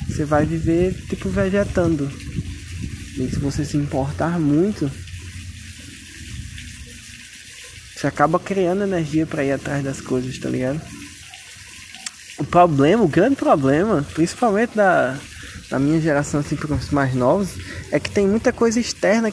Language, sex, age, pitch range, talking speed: Portuguese, male, 20-39, 130-190 Hz, 135 wpm